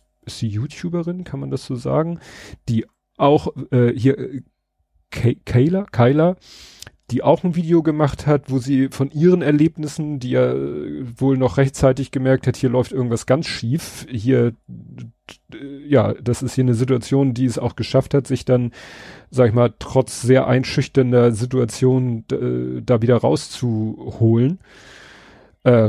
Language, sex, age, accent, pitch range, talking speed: German, male, 40-59, German, 115-140 Hz, 145 wpm